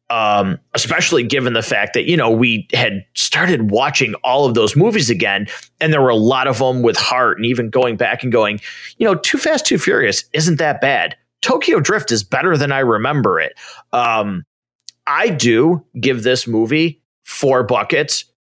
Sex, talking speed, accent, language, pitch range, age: male, 185 wpm, American, English, 110-145 Hz, 30-49